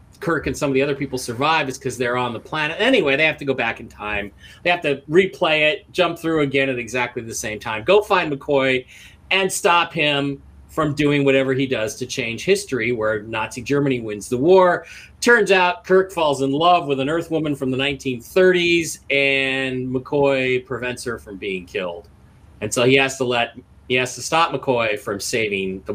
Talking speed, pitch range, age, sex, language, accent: 205 wpm, 125-175 Hz, 40-59, male, English, American